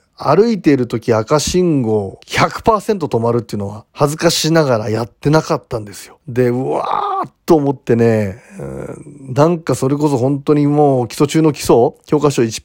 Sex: male